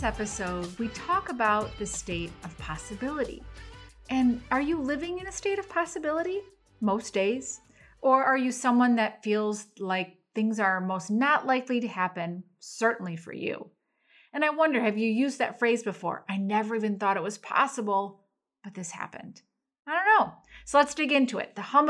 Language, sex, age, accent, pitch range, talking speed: English, female, 30-49, American, 195-275 Hz, 180 wpm